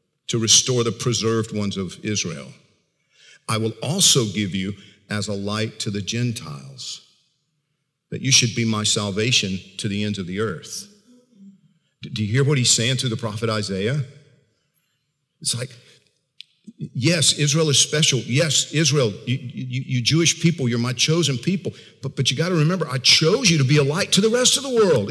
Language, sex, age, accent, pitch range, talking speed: English, male, 50-69, American, 125-165 Hz, 180 wpm